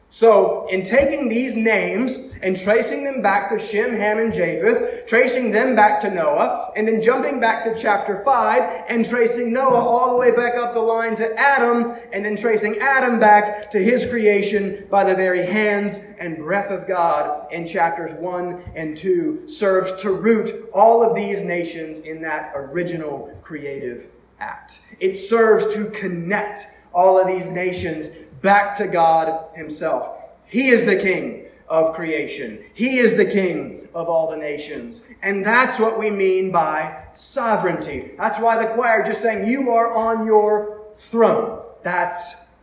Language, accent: English, American